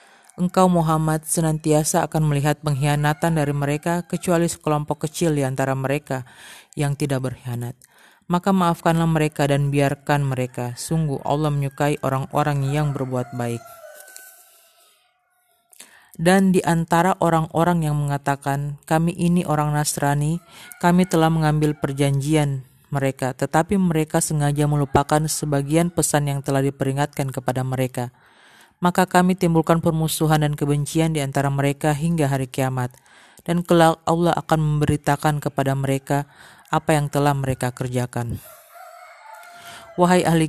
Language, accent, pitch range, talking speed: Indonesian, native, 140-165 Hz, 120 wpm